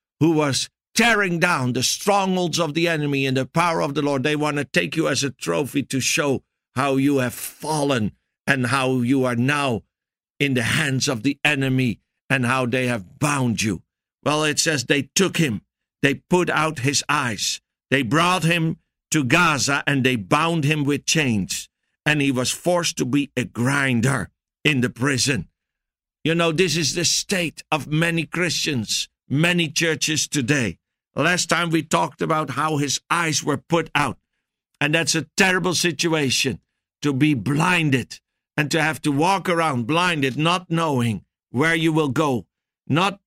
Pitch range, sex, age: 135-165 Hz, male, 60-79